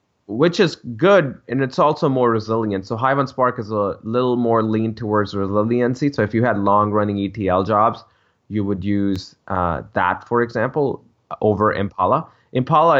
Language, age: English, 20-39